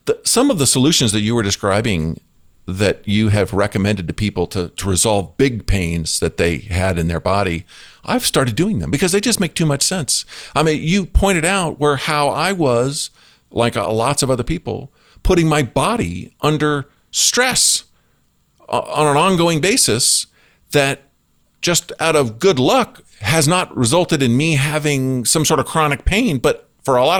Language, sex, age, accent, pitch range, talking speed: English, male, 50-69, American, 105-170 Hz, 175 wpm